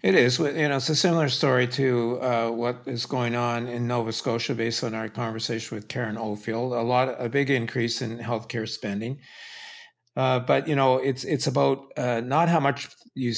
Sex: male